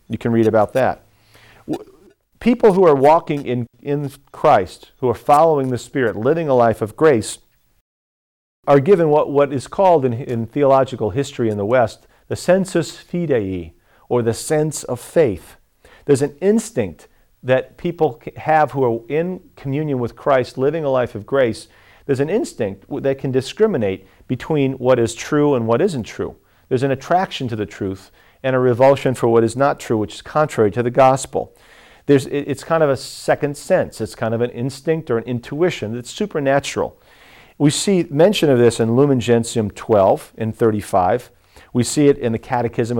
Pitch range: 110-145 Hz